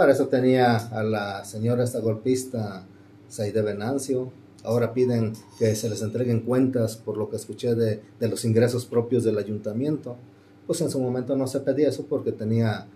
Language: Spanish